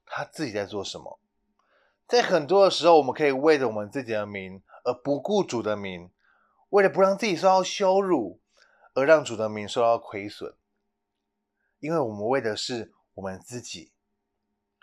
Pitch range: 100-150 Hz